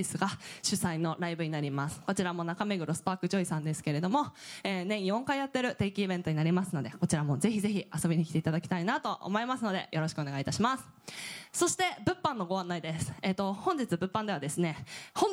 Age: 20-39